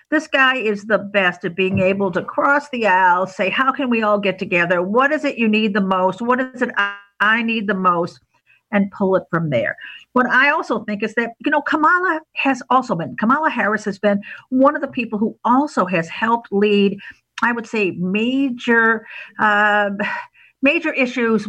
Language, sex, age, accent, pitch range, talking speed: English, female, 50-69, American, 185-245 Hz, 195 wpm